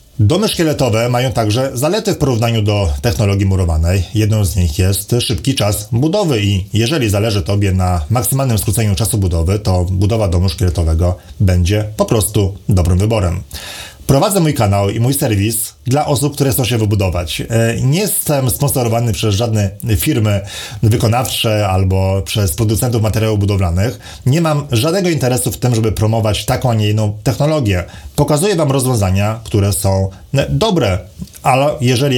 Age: 30-49